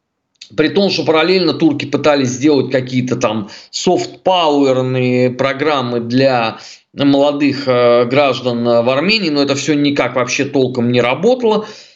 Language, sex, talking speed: Russian, male, 120 wpm